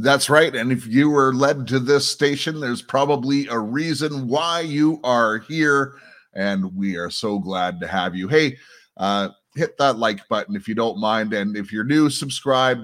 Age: 30-49